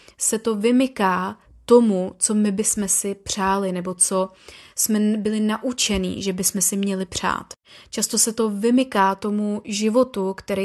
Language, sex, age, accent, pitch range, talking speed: Czech, female, 20-39, native, 195-215 Hz, 145 wpm